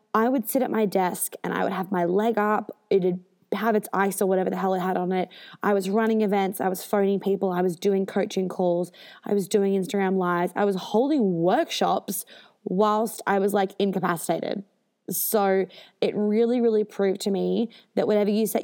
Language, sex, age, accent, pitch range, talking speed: English, female, 20-39, Australian, 190-215 Hz, 205 wpm